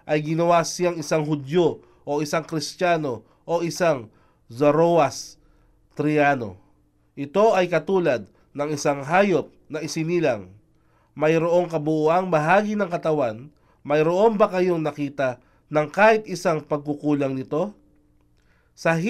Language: Filipino